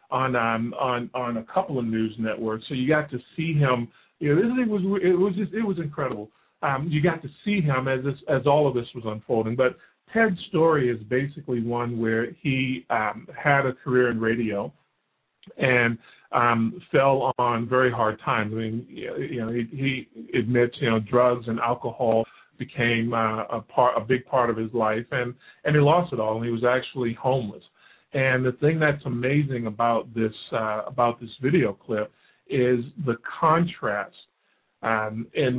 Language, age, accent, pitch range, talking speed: English, 40-59, American, 110-135 Hz, 185 wpm